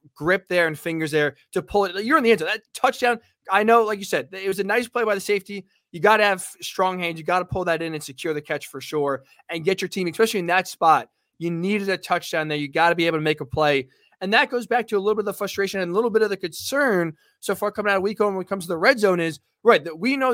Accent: American